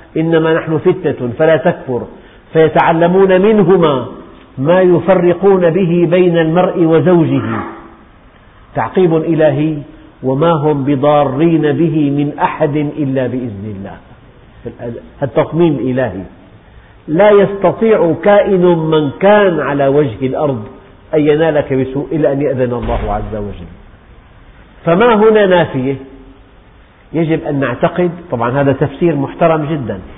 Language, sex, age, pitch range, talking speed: Arabic, male, 50-69, 125-180 Hz, 110 wpm